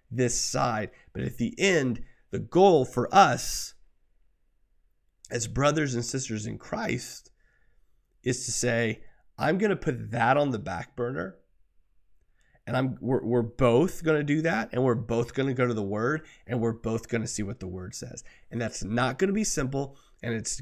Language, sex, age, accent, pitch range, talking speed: English, male, 30-49, American, 110-140 Hz, 190 wpm